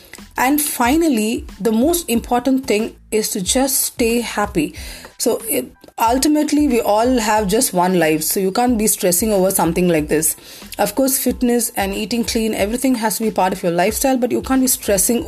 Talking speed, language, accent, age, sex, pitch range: 185 wpm, English, Indian, 30-49, female, 190-255 Hz